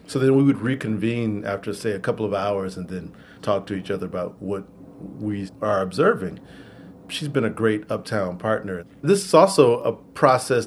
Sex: male